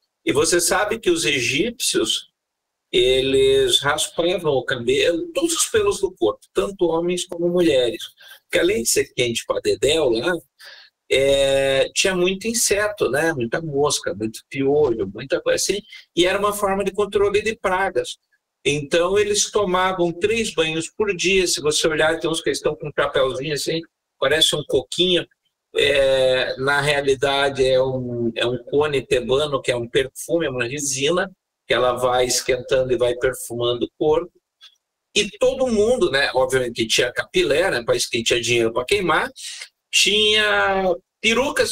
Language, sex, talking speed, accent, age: Portuguese, male, 155 wpm, Brazilian, 50-69